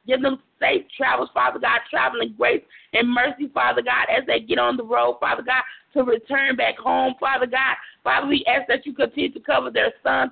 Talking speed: 210 wpm